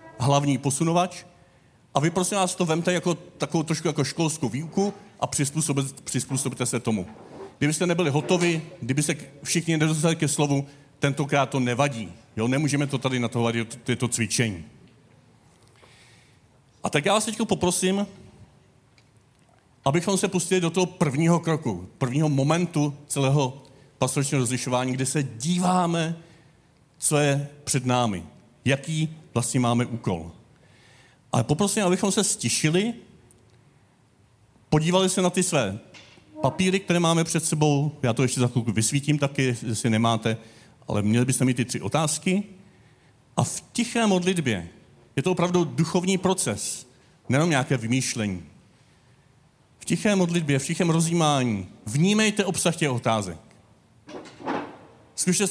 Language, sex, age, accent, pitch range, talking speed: Czech, male, 40-59, native, 125-170 Hz, 130 wpm